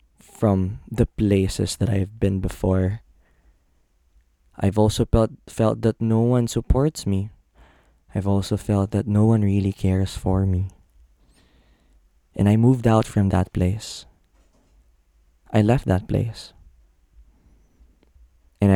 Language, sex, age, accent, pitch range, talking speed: Filipino, male, 20-39, native, 65-100 Hz, 120 wpm